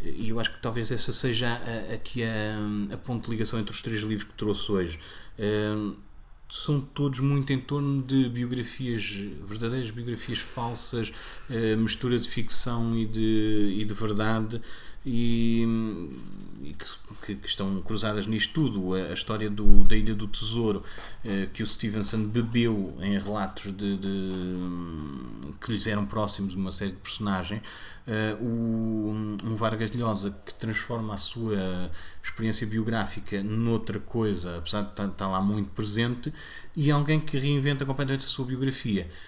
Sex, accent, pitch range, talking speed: male, Portuguese, 100-120 Hz, 150 wpm